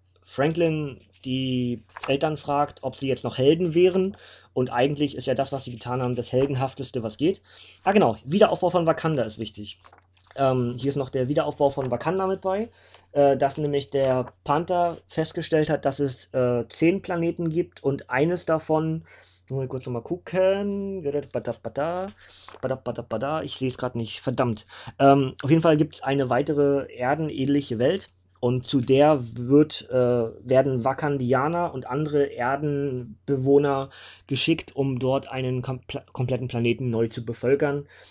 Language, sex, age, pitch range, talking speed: German, male, 20-39, 125-145 Hz, 150 wpm